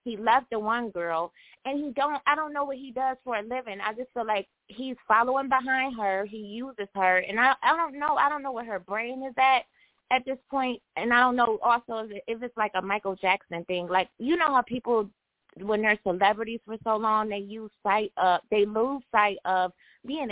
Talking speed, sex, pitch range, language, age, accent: 230 wpm, female, 200-260 Hz, English, 20-39, American